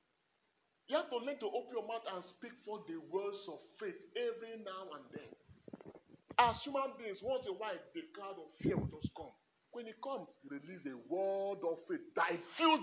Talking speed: 195 wpm